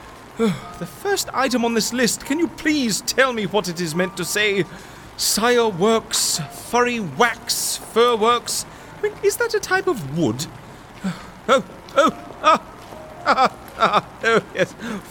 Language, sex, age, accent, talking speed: English, male, 30-49, British, 160 wpm